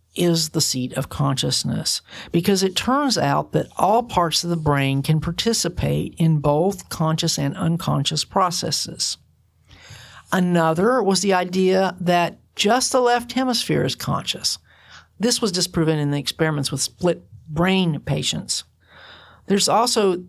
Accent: American